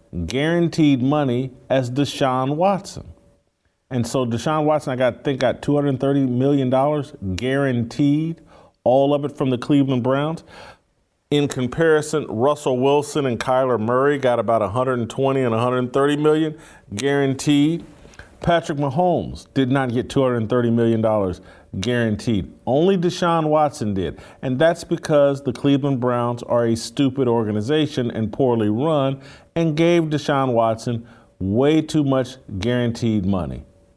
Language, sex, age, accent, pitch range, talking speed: English, male, 40-59, American, 115-145 Hz, 125 wpm